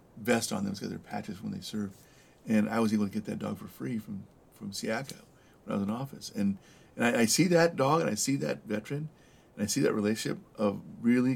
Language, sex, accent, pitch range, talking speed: English, male, American, 105-130 Hz, 245 wpm